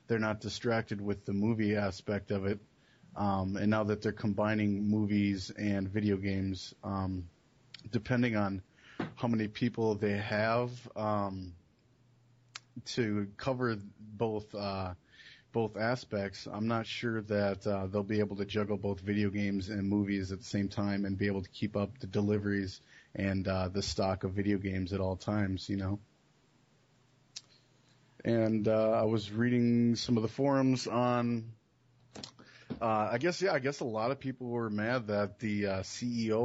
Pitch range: 100-115 Hz